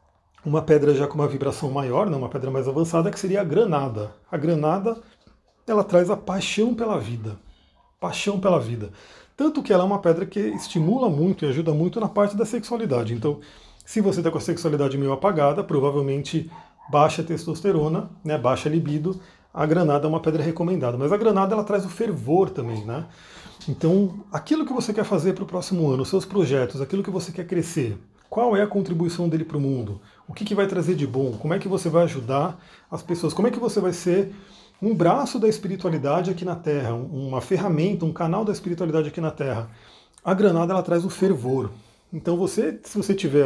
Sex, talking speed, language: male, 205 wpm, Portuguese